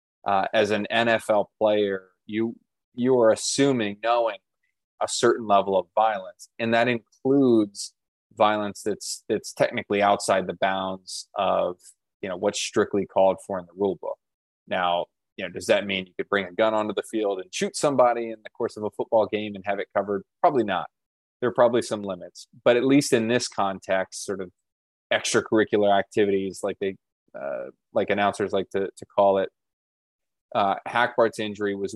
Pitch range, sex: 95-115 Hz, male